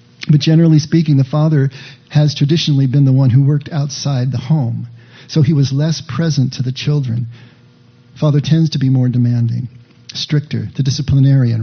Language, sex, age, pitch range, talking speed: English, male, 50-69, 125-150 Hz, 165 wpm